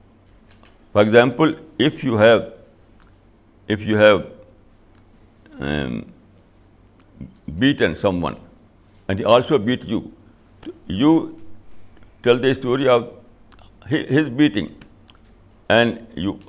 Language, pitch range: Urdu, 100-115 Hz